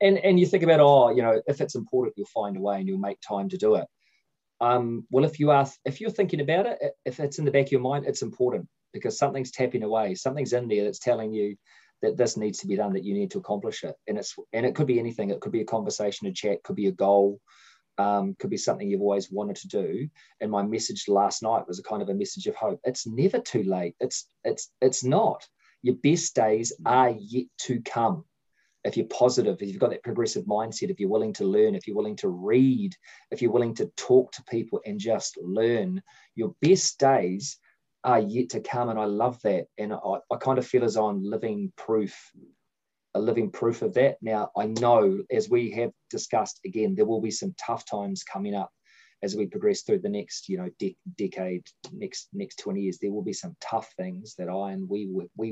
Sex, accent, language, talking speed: male, Australian, English, 230 wpm